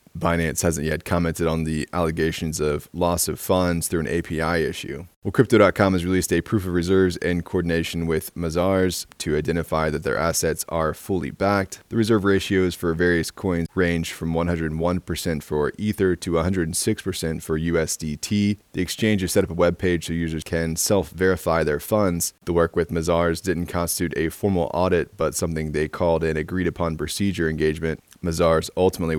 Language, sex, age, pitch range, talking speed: English, male, 20-39, 80-95 Hz, 165 wpm